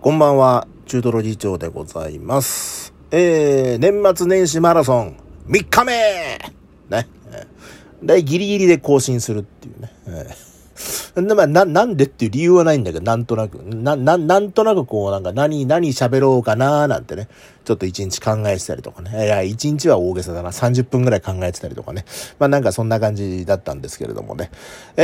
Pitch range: 115-180 Hz